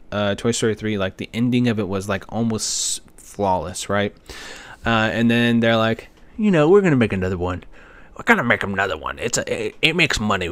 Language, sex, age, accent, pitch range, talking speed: English, male, 20-39, American, 95-120 Hz, 210 wpm